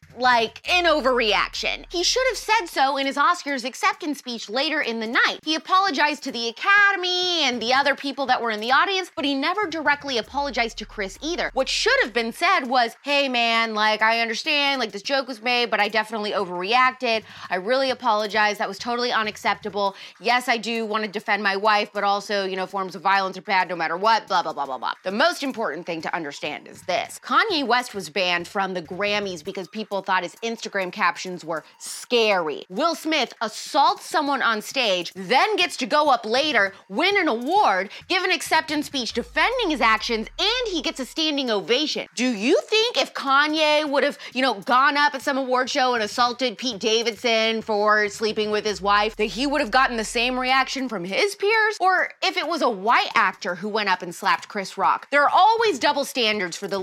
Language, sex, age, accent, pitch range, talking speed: English, female, 20-39, American, 210-295 Hz, 210 wpm